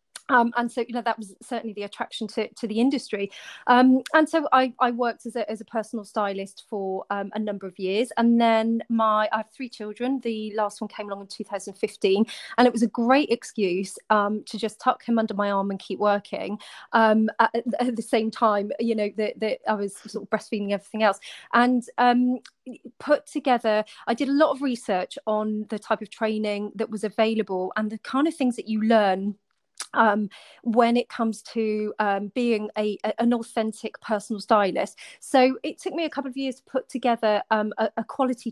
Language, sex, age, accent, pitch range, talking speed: English, female, 30-49, British, 210-240 Hz, 205 wpm